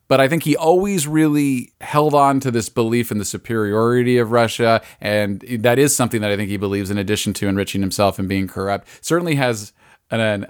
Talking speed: 205 wpm